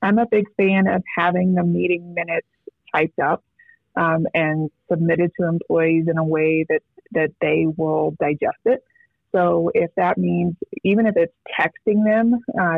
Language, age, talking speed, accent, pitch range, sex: English, 20-39, 165 wpm, American, 165-190 Hz, female